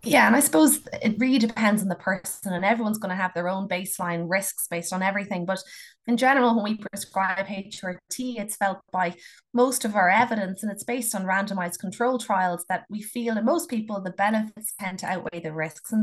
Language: English